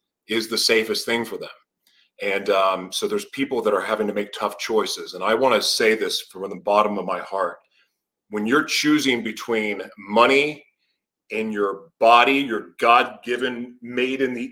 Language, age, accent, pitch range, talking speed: English, 30-49, American, 110-150 Hz, 180 wpm